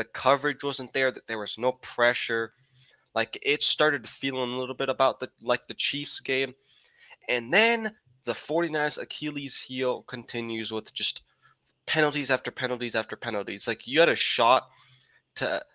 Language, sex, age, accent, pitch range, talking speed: English, male, 20-39, American, 110-130 Hz, 160 wpm